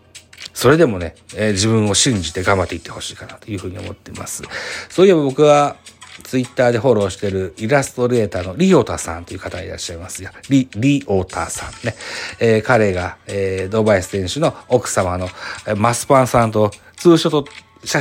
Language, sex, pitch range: Japanese, male, 95-125 Hz